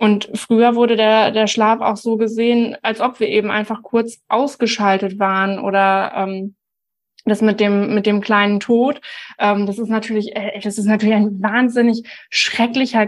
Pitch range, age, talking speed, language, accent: 210-240 Hz, 20-39, 165 wpm, German, German